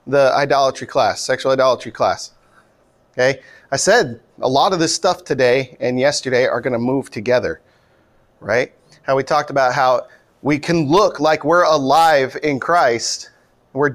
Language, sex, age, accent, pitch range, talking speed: English, male, 30-49, American, 135-165 Hz, 160 wpm